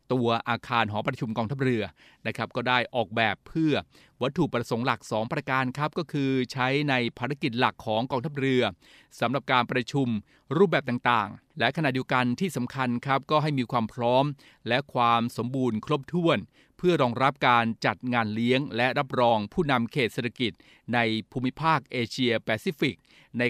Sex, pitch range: male, 115-135 Hz